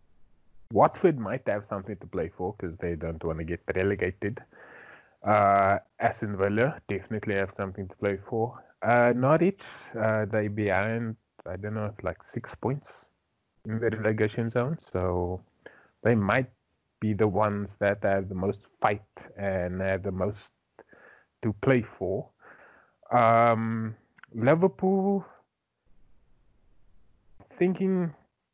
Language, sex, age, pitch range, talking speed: English, male, 30-49, 100-125 Hz, 125 wpm